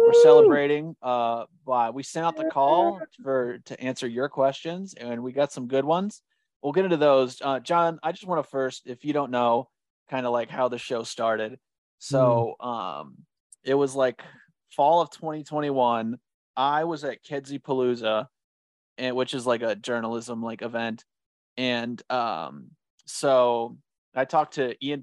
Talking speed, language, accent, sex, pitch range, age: 170 wpm, English, American, male, 120-140 Hz, 30-49